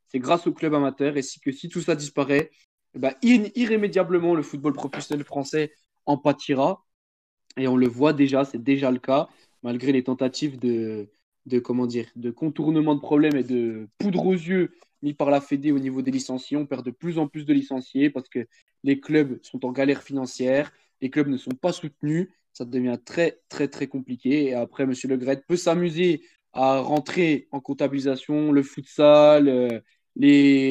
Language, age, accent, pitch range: French, 20-39, French, 130-155 Hz